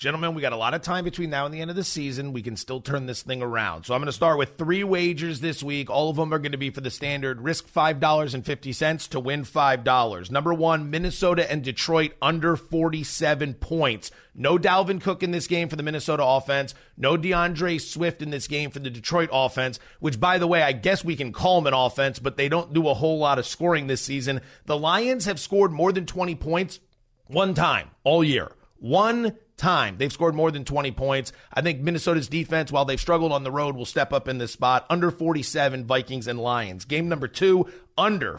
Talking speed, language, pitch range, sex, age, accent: 225 wpm, English, 135-170 Hz, male, 30-49, American